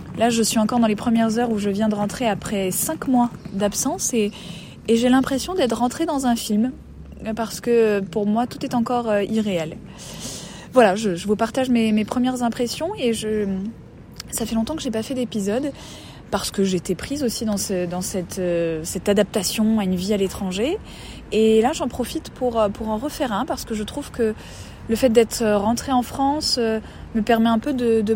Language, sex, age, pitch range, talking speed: French, female, 20-39, 205-245 Hz, 205 wpm